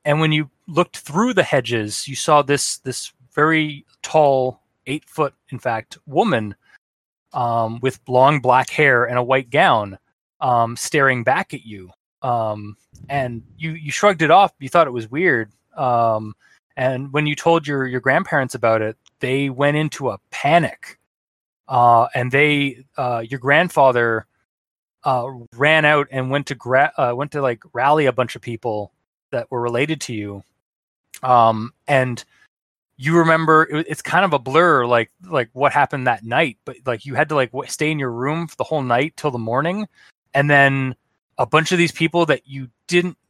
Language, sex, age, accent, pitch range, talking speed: English, male, 20-39, American, 120-150 Hz, 180 wpm